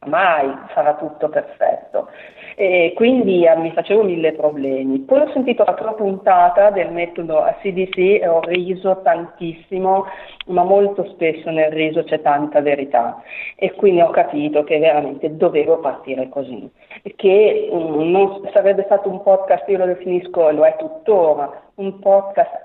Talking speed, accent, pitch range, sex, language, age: 150 wpm, native, 160-215 Hz, female, Italian, 50-69